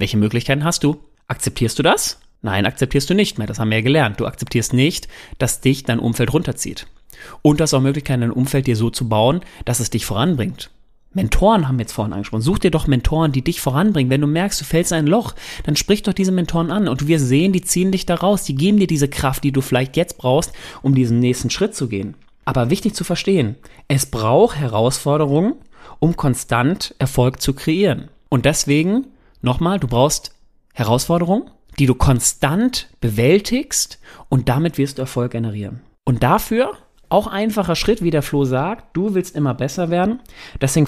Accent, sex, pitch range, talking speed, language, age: German, male, 130-180 Hz, 195 wpm, German, 30-49